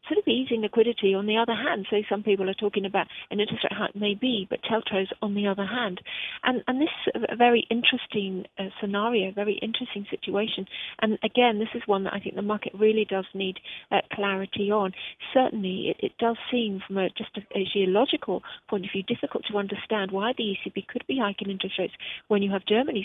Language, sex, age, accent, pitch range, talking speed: English, female, 40-59, British, 195-230 Hz, 215 wpm